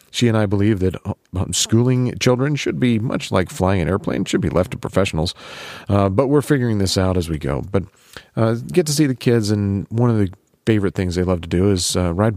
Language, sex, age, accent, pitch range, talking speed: English, male, 40-59, American, 90-115 Hz, 240 wpm